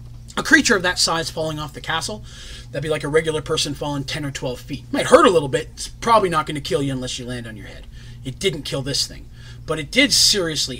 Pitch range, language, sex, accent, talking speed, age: 120-160 Hz, English, male, American, 260 wpm, 30-49